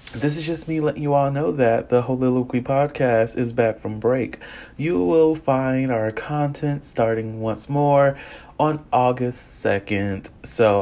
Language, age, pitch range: English, 30-49, 105-130 Hz